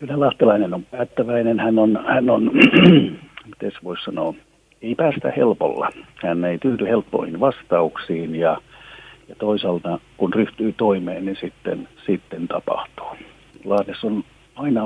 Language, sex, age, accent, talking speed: Finnish, male, 50-69, native, 130 wpm